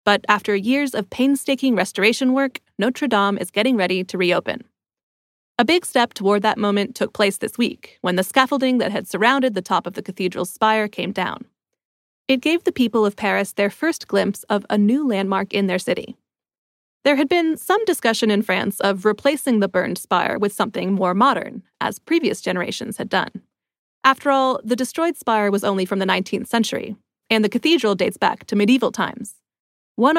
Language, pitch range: English, 200-260 Hz